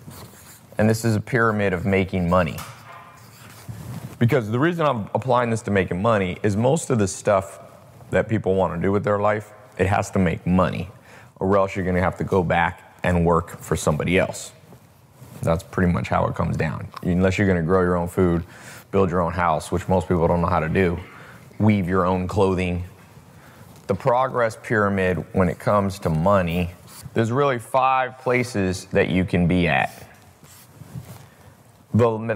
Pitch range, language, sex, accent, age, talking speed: 90-110 Hz, English, male, American, 30-49, 175 wpm